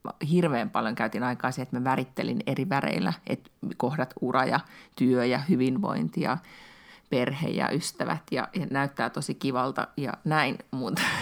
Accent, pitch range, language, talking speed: native, 130-190 Hz, Finnish, 155 wpm